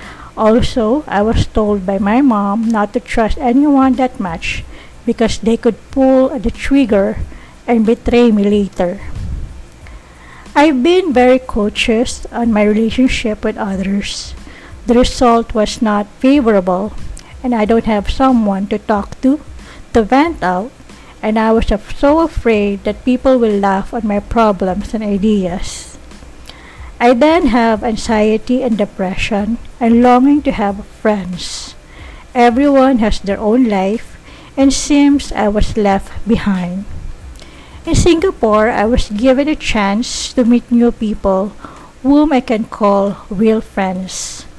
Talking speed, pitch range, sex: 135 wpm, 205-250 Hz, female